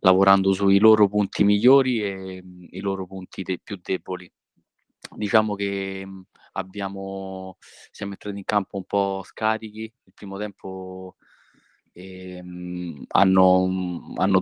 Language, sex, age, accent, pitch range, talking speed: Italian, male, 20-39, native, 95-100 Hz, 110 wpm